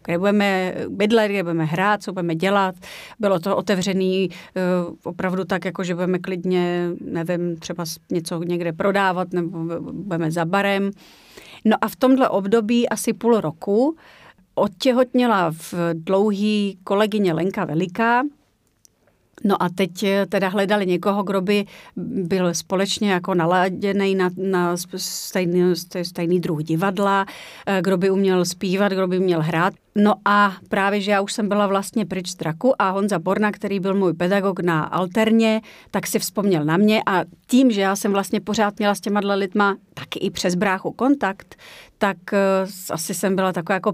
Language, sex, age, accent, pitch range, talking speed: Czech, female, 40-59, native, 180-200 Hz, 155 wpm